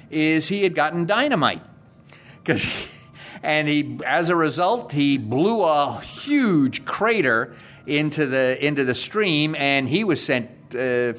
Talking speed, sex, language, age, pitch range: 140 wpm, male, English, 50-69, 120-150 Hz